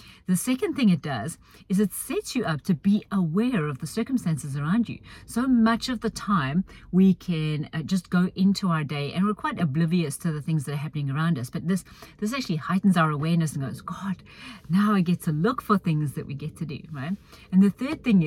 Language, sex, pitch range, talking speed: English, female, 155-200 Hz, 225 wpm